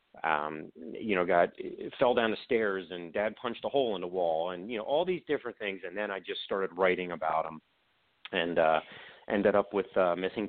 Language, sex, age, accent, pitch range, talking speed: English, male, 40-59, American, 95-140 Hz, 215 wpm